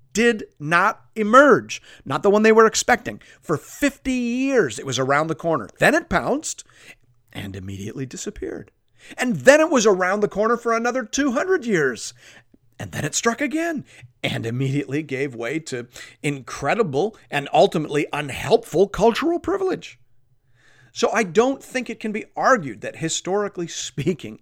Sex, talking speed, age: male, 150 wpm, 40-59